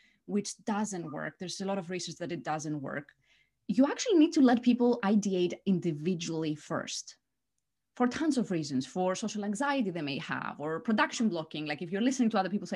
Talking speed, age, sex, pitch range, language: 195 wpm, 20-39, female, 175-240 Hz, English